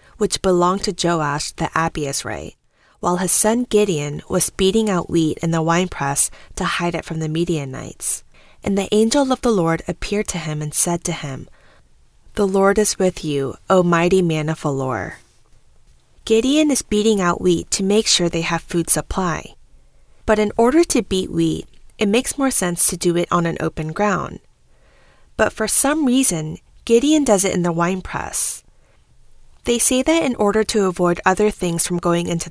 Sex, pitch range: female, 170-210 Hz